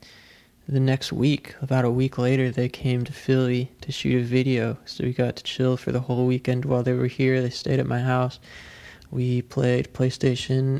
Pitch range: 125-135 Hz